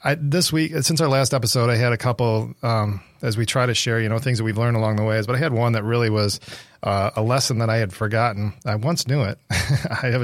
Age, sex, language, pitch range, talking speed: 40-59, male, English, 105-125 Hz, 270 wpm